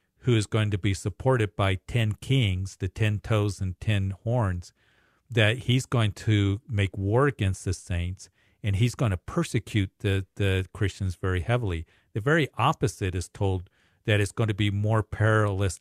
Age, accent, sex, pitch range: 50-69, American, male, 100-115 Hz